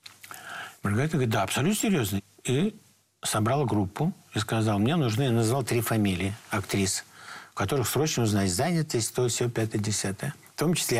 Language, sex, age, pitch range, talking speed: Russian, male, 50-69, 105-130 Hz, 155 wpm